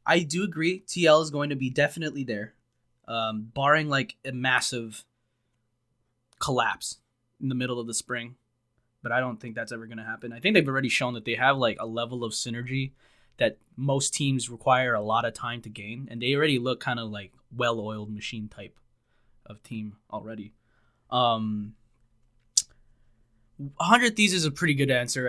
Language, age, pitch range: English, 20-39, 115-140 Hz